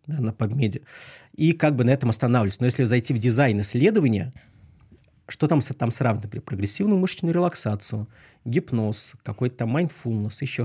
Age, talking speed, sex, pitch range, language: 20-39, 150 wpm, male, 110-140 Hz, Russian